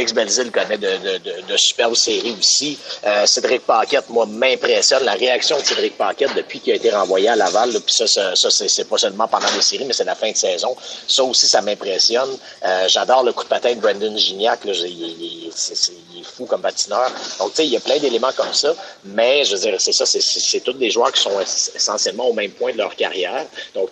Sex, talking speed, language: male, 245 wpm, French